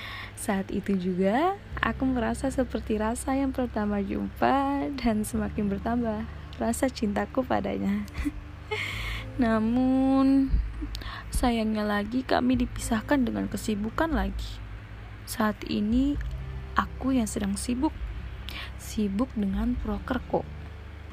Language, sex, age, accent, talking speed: Indonesian, female, 20-39, native, 95 wpm